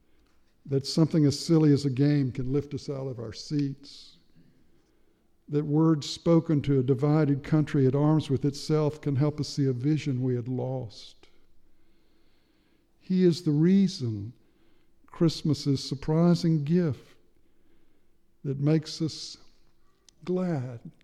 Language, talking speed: English, 130 wpm